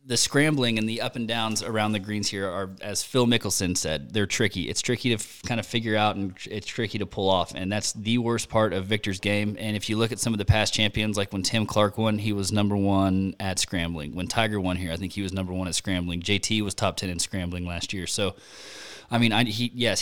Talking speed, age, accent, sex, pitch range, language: 265 wpm, 20-39, American, male, 95-110 Hz, English